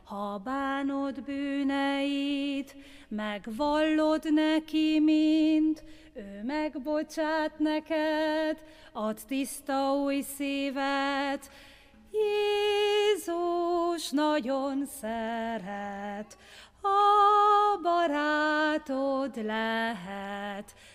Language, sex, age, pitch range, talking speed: Hungarian, female, 30-49, 230-310 Hz, 55 wpm